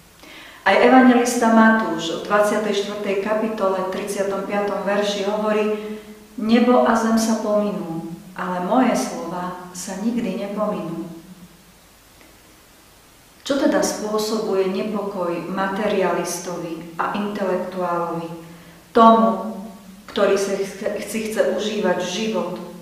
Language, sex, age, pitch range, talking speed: Slovak, female, 40-59, 180-210 Hz, 90 wpm